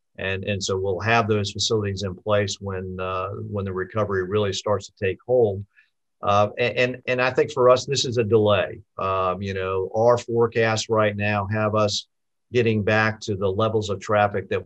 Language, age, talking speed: English, 50-69, 190 wpm